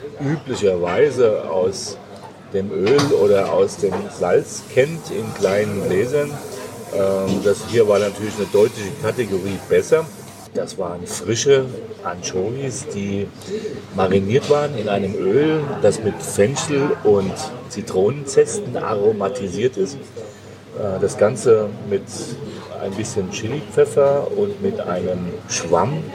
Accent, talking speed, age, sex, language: German, 110 wpm, 40-59, male, German